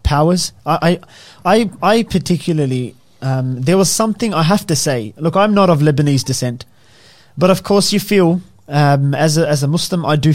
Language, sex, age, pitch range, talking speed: English, male, 20-39, 140-170 Hz, 185 wpm